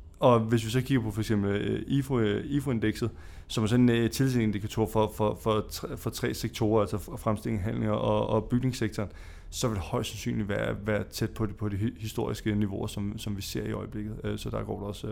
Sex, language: male, Danish